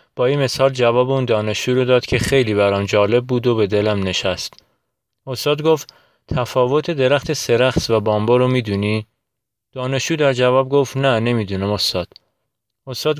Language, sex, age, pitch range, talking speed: Persian, male, 30-49, 105-130 Hz, 155 wpm